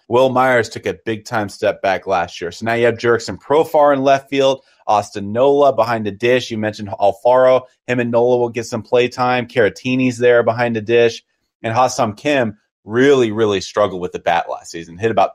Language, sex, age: English, male, 30-49